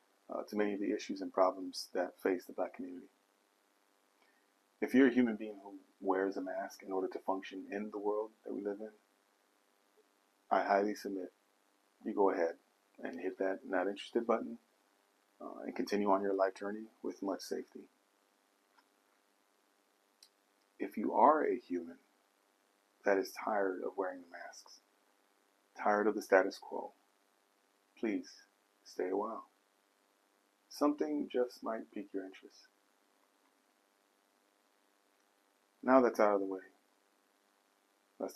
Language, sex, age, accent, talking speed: English, male, 30-49, American, 140 wpm